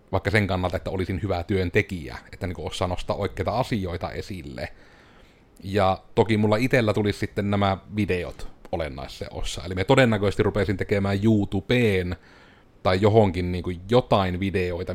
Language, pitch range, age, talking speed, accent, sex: Finnish, 90-105 Hz, 30-49, 150 wpm, native, male